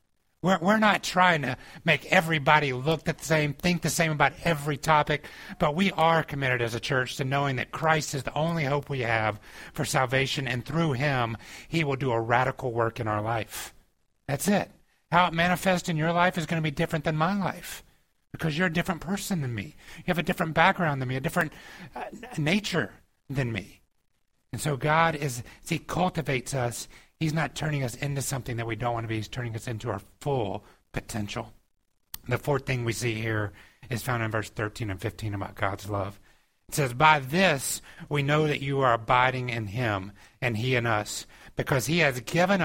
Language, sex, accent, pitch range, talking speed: English, male, American, 115-165 Hz, 205 wpm